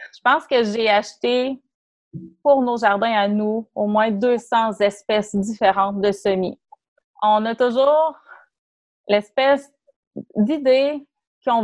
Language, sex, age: French, female, 30-49